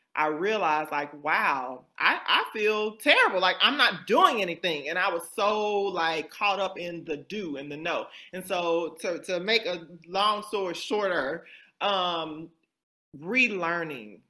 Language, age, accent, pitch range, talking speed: English, 30-49, American, 160-195 Hz, 155 wpm